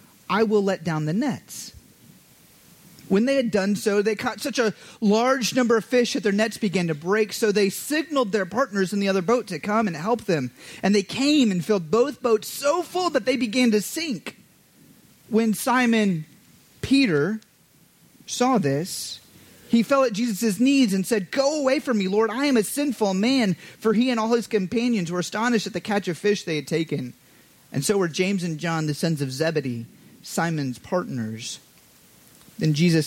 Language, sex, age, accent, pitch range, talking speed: English, male, 30-49, American, 150-225 Hz, 190 wpm